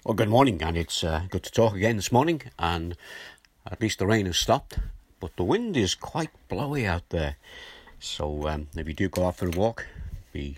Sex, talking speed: male, 215 wpm